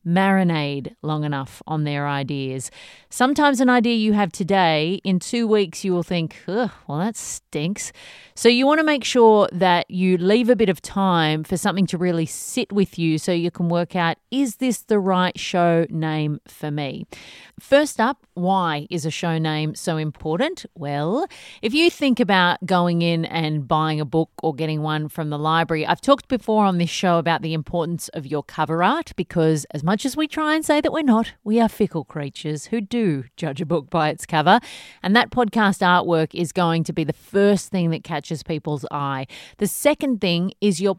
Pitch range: 160-210 Hz